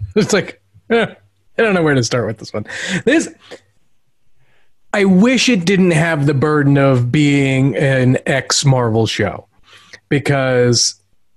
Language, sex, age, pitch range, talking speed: English, male, 30-49, 115-155 Hz, 135 wpm